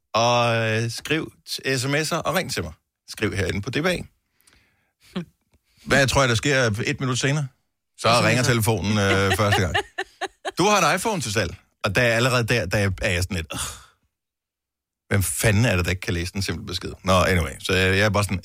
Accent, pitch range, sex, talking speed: native, 100-130 Hz, male, 200 wpm